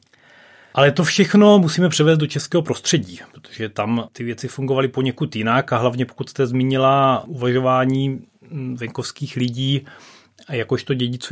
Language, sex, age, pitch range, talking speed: Czech, male, 30-49, 115-135 Hz, 135 wpm